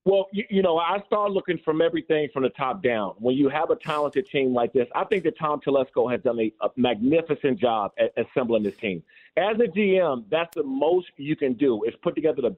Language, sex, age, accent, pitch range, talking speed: English, male, 40-59, American, 140-175 Hz, 235 wpm